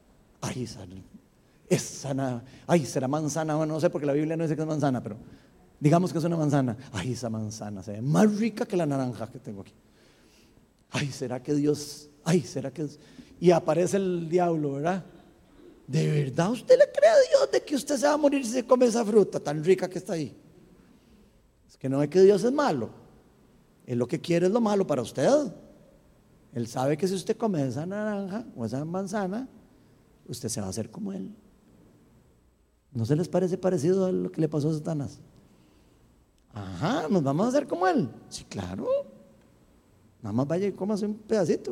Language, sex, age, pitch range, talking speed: Spanish, male, 40-59, 130-210 Hz, 195 wpm